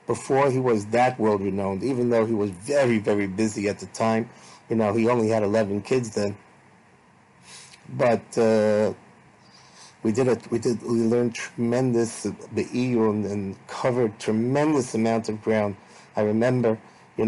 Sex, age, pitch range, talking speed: male, 30-49, 105-120 Hz, 160 wpm